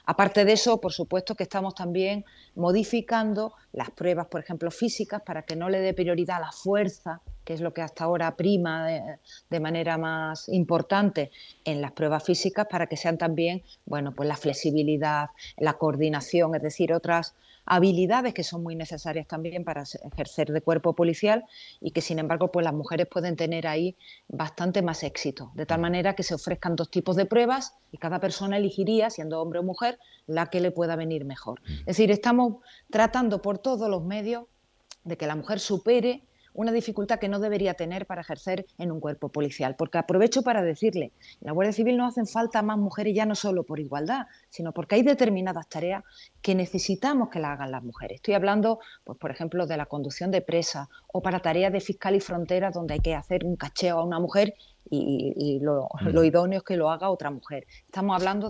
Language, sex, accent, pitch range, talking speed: Spanish, female, Spanish, 160-200 Hz, 200 wpm